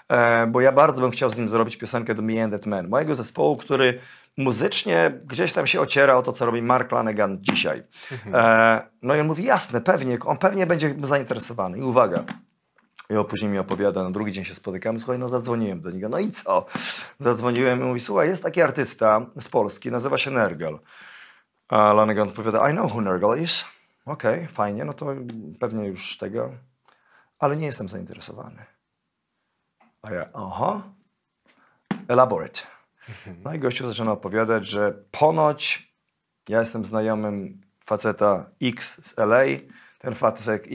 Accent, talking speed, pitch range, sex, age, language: native, 160 wpm, 110-135 Hz, male, 30-49, Polish